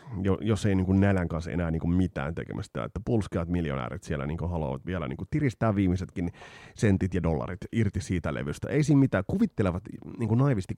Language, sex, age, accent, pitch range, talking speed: Finnish, male, 30-49, native, 85-115 Hz, 175 wpm